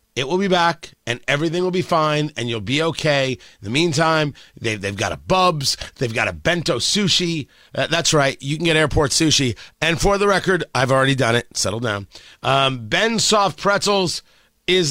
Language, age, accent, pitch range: English, 30-49, American, 135-230 Hz